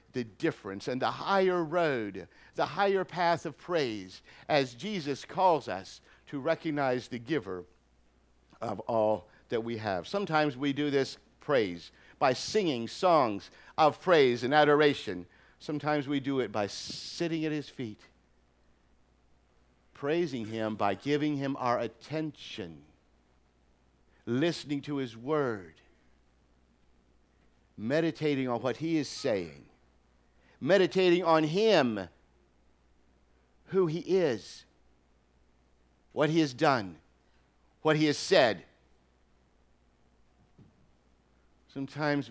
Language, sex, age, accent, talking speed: English, male, 50-69, American, 110 wpm